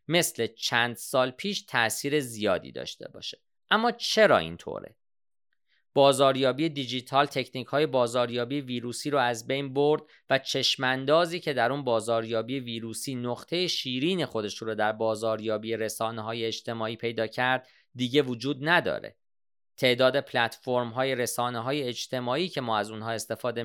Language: Persian